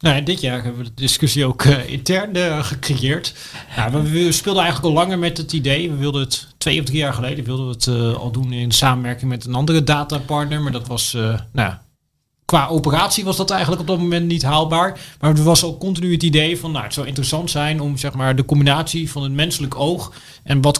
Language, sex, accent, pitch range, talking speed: Dutch, male, Dutch, 125-155 Hz, 230 wpm